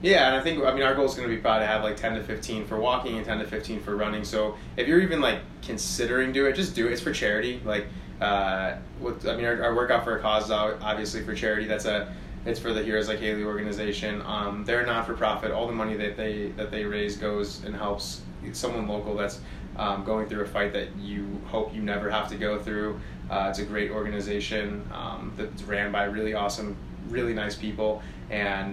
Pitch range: 100-110 Hz